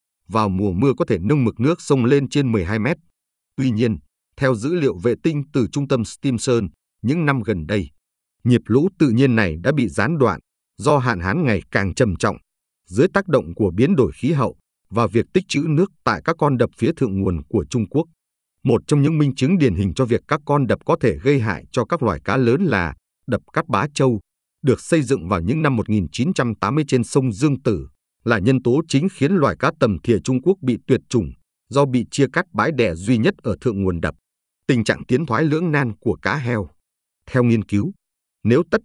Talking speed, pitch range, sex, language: 220 wpm, 105-145 Hz, male, Vietnamese